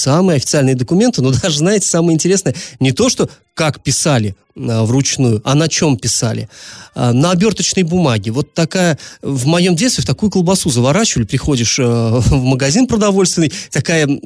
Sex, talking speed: male, 145 wpm